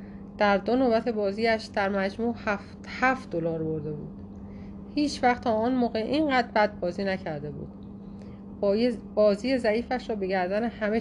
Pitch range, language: 175-240 Hz, Persian